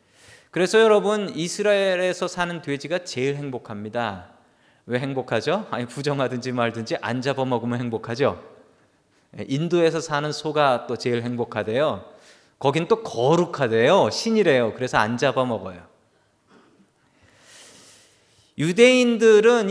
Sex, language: male, Korean